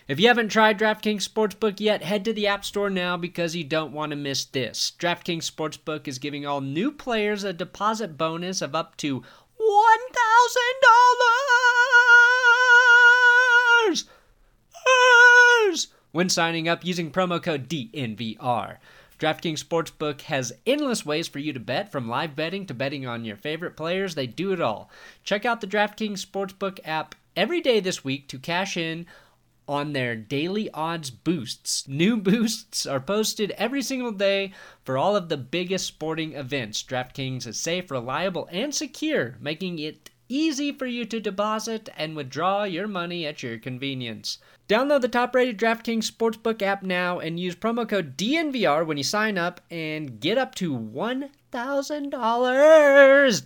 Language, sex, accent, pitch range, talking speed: English, male, American, 155-245 Hz, 155 wpm